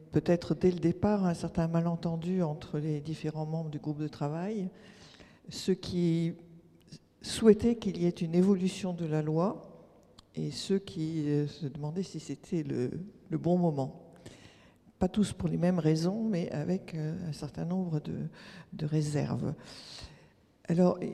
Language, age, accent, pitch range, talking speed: French, 50-69, French, 150-180 Hz, 150 wpm